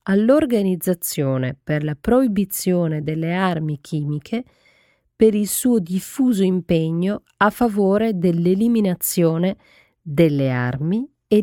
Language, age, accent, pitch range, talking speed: Italian, 40-59, native, 160-225 Hz, 95 wpm